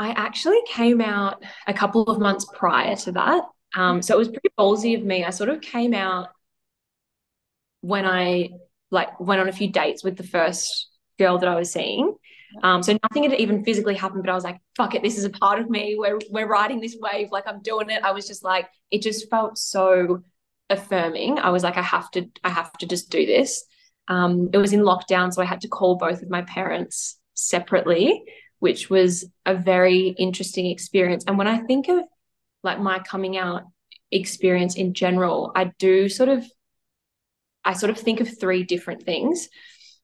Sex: female